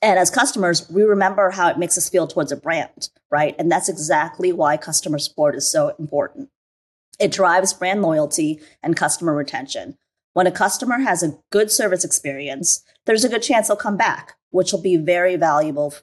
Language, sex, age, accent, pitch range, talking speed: English, female, 30-49, American, 160-210 Hz, 185 wpm